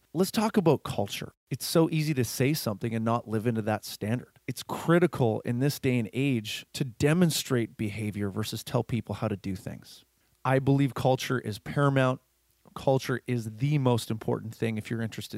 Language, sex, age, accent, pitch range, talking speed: English, male, 30-49, American, 105-130 Hz, 185 wpm